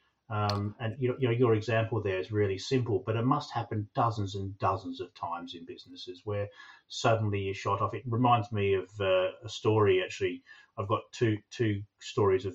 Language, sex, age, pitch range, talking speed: English, male, 40-59, 95-115 Hz, 190 wpm